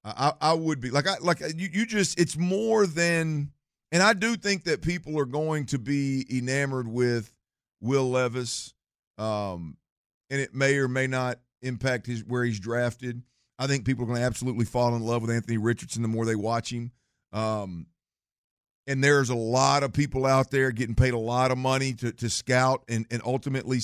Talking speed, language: 195 wpm, English